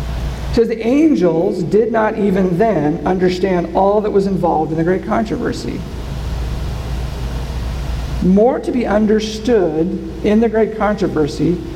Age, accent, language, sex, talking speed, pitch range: 50-69, American, English, male, 120 wpm, 160-225 Hz